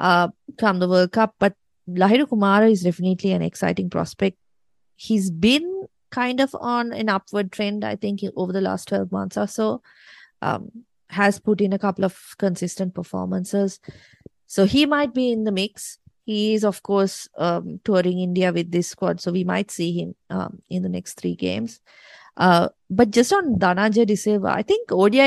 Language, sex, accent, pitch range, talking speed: English, female, Indian, 180-215 Hz, 180 wpm